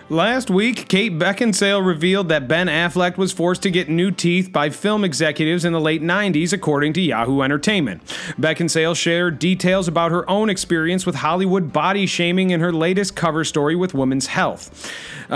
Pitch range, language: 145-180 Hz, English